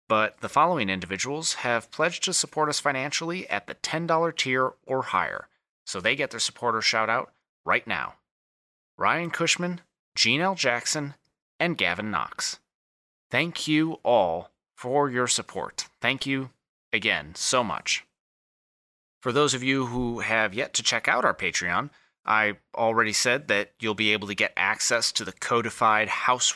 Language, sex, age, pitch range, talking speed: English, male, 30-49, 115-155 Hz, 160 wpm